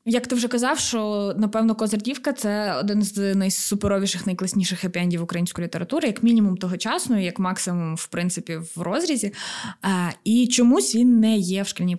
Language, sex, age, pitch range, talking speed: Ukrainian, female, 20-39, 190-235 Hz, 160 wpm